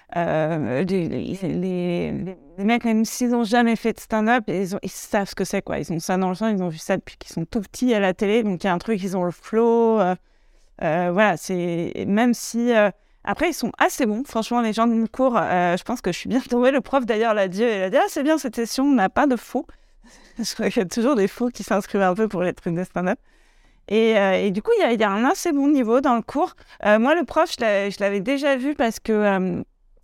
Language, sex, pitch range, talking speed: French, female, 190-240 Hz, 280 wpm